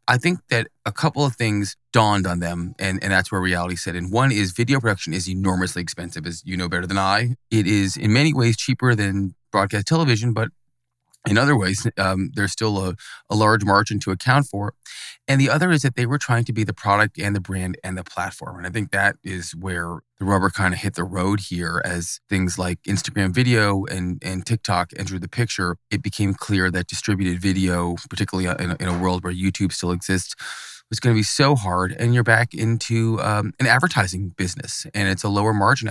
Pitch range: 95-110 Hz